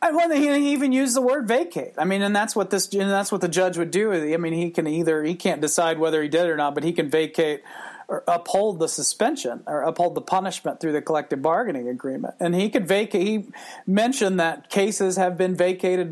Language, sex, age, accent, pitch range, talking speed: English, male, 40-59, American, 165-210 Hz, 230 wpm